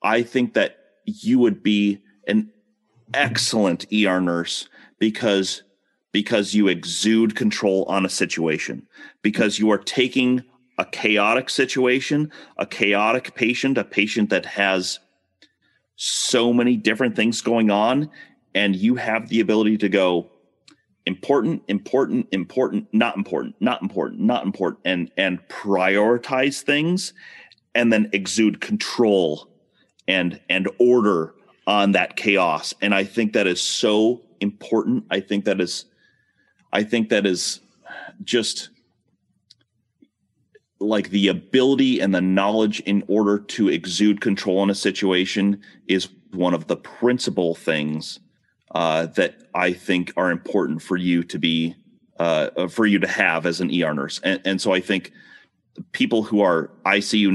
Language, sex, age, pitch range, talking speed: English, male, 30-49, 95-120 Hz, 140 wpm